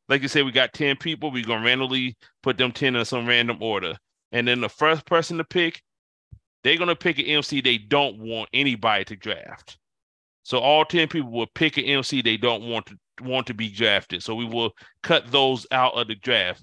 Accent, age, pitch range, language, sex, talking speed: American, 30-49, 115-135 Hz, English, male, 215 wpm